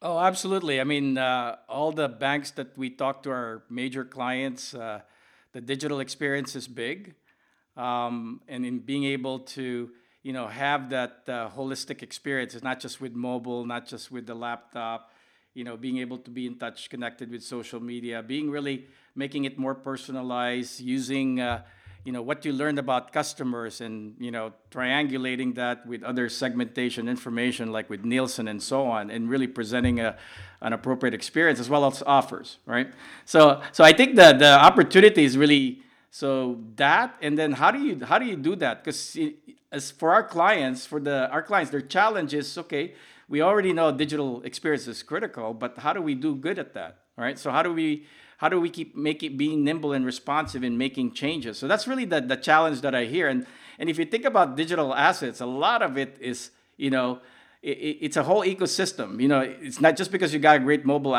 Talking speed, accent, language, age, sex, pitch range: 200 wpm, Filipino, English, 50-69, male, 125-150 Hz